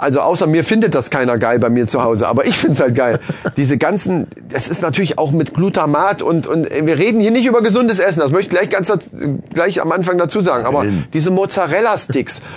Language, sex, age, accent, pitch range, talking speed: German, male, 30-49, German, 155-190 Hz, 225 wpm